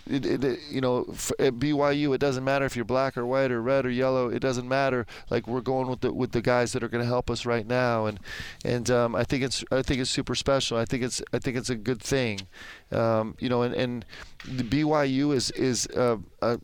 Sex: male